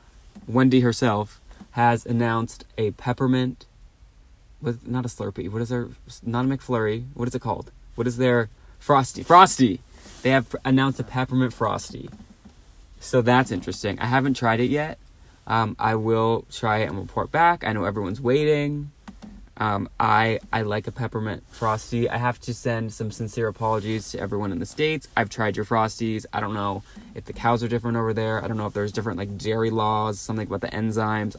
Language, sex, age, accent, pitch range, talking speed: English, male, 20-39, American, 105-120 Hz, 190 wpm